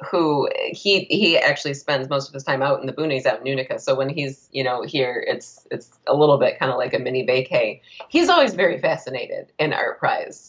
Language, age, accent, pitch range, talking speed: English, 30-49, American, 130-170 Hz, 230 wpm